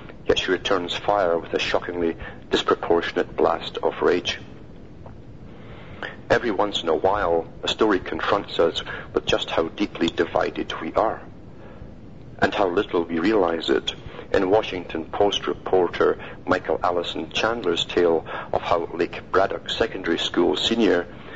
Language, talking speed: English, 135 wpm